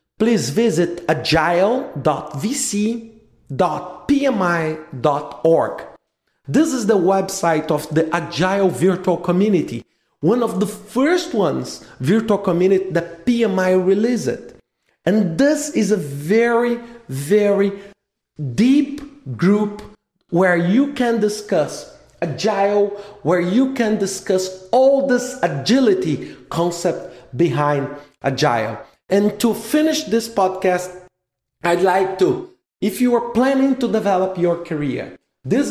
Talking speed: 105 wpm